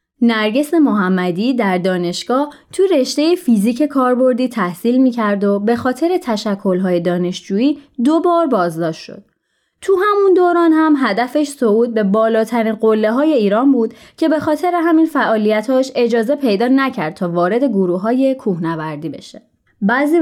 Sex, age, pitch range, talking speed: female, 20-39, 190-285 Hz, 140 wpm